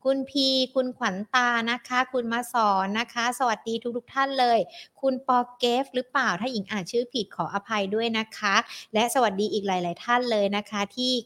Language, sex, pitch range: Thai, female, 210-265 Hz